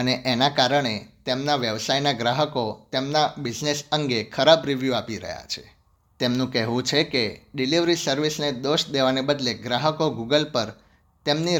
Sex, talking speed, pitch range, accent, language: male, 100 wpm, 120-150 Hz, native, Gujarati